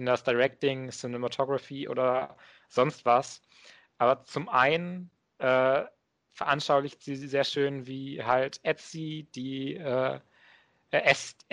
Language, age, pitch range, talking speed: German, 30-49, 125-140 Hz, 105 wpm